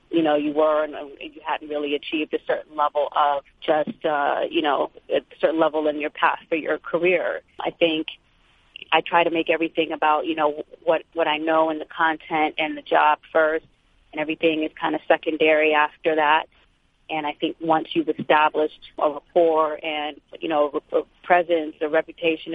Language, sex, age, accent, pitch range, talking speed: English, female, 30-49, American, 150-165 Hz, 185 wpm